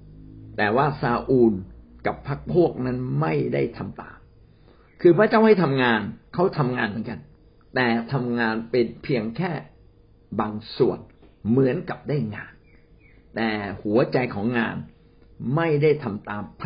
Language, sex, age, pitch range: Thai, male, 60-79, 110-165 Hz